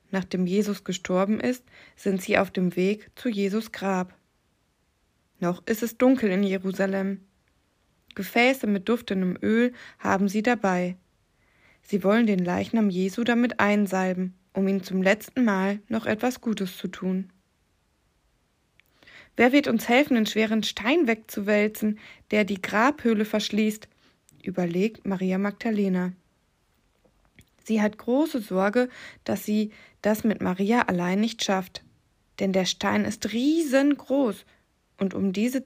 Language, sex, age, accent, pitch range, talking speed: German, female, 20-39, German, 195-235 Hz, 130 wpm